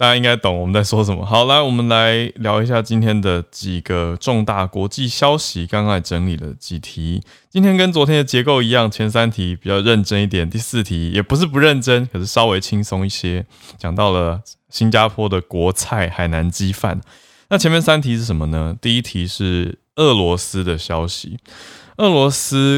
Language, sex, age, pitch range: Chinese, male, 20-39, 90-115 Hz